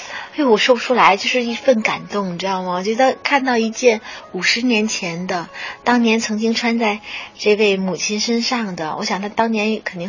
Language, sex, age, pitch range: Chinese, female, 30-49, 185-235 Hz